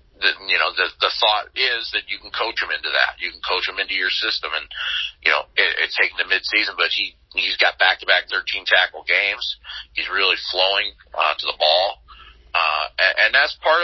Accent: American